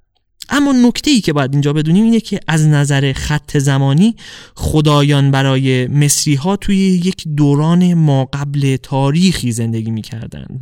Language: English